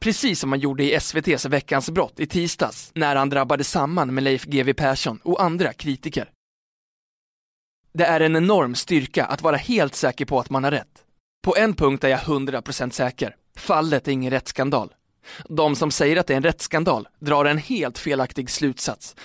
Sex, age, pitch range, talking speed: male, 20-39, 130-165 Hz, 185 wpm